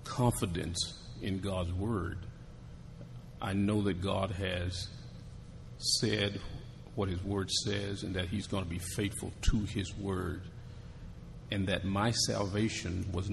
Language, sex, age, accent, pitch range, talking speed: English, male, 50-69, American, 95-115 Hz, 130 wpm